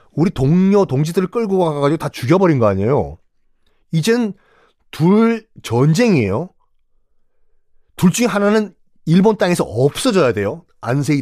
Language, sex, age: Korean, male, 40-59